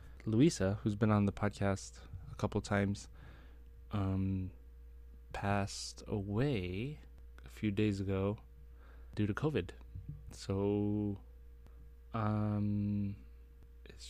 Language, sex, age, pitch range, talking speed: English, male, 20-39, 65-105 Hz, 95 wpm